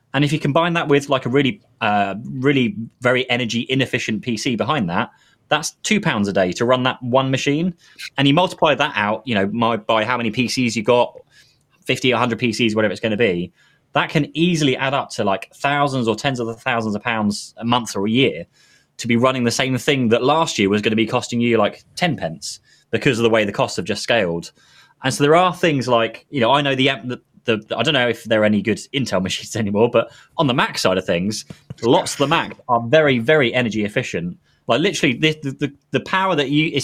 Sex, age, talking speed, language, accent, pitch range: male, 20-39, 235 wpm, English, British, 110-145 Hz